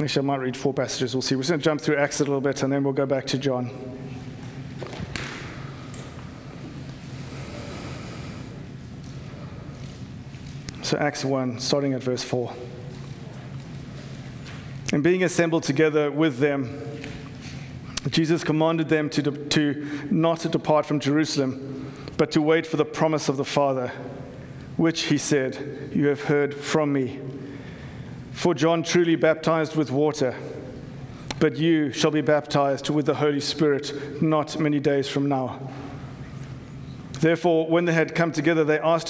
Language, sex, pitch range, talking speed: English, male, 135-155 Hz, 140 wpm